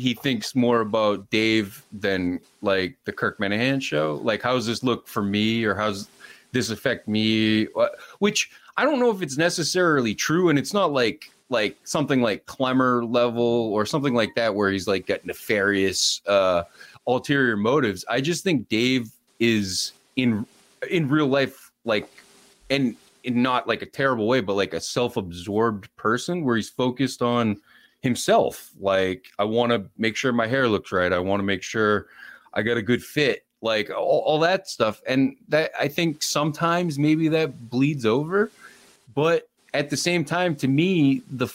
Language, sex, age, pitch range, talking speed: English, male, 30-49, 105-140 Hz, 175 wpm